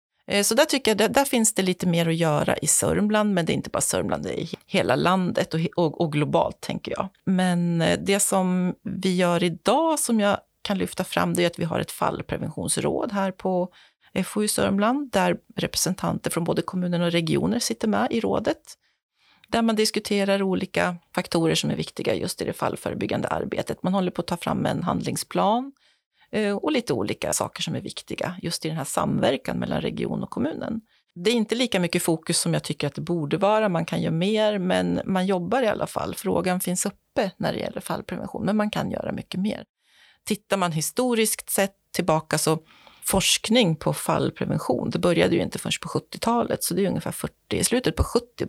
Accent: native